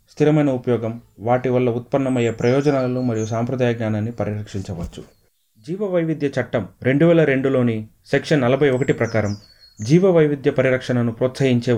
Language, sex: Telugu, male